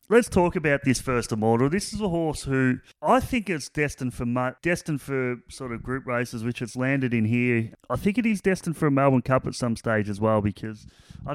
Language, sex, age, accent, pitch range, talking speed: English, male, 30-49, Australian, 120-155 Hz, 235 wpm